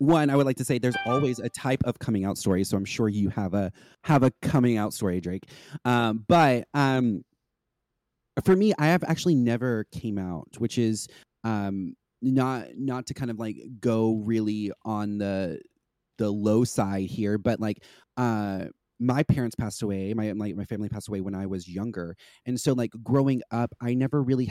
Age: 30-49